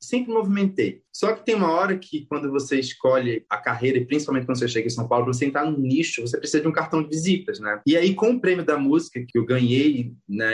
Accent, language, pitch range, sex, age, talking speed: Brazilian, Portuguese, 125-155 Hz, male, 20-39, 250 wpm